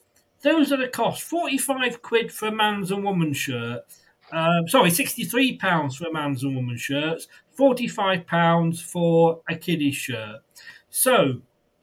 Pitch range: 140-195 Hz